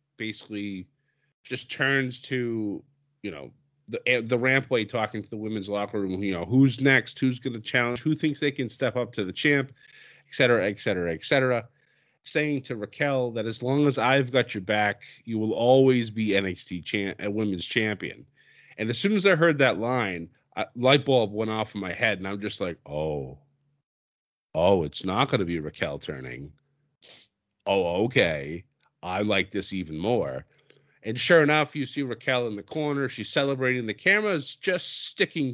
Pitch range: 105-145 Hz